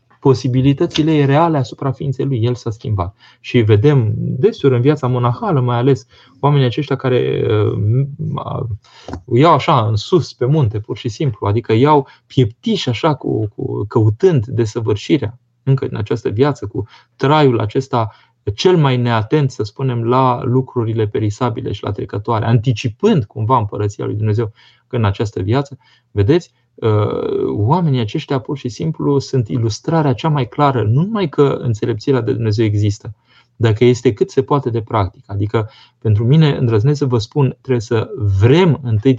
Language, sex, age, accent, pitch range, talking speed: Romanian, male, 20-39, native, 110-135 Hz, 150 wpm